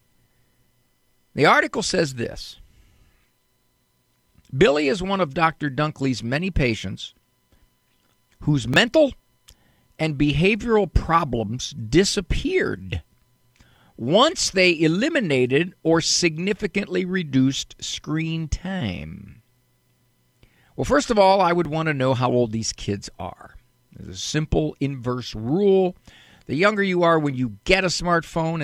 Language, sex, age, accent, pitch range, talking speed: English, male, 50-69, American, 125-175 Hz, 115 wpm